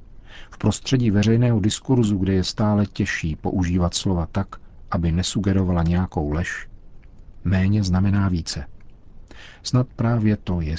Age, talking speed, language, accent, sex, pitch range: 50-69, 120 wpm, Czech, native, male, 85-100 Hz